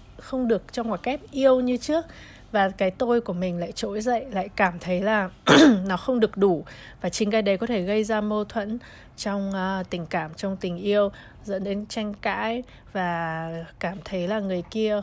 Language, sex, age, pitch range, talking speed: Vietnamese, female, 20-39, 180-220 Hz, 205 wpm